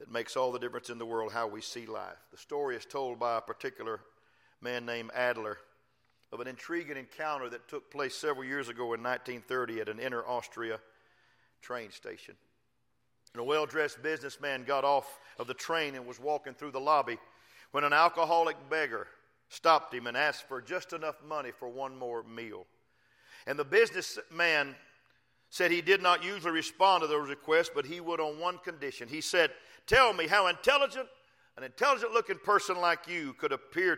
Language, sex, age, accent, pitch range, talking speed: English, male, 50-69, American, 130-170 Hz, 180 wpm